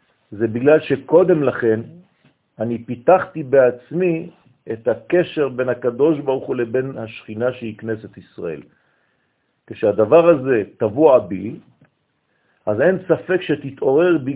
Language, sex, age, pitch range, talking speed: French, male, 50-69, 120-160 Hz, 110 wpm